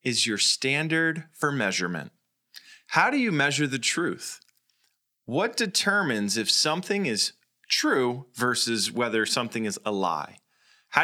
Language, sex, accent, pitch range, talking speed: English, male, American, 110-155 Hz, 130 wpm